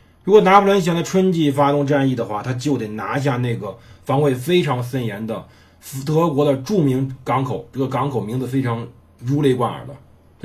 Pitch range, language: 120-155 Hz, Chinese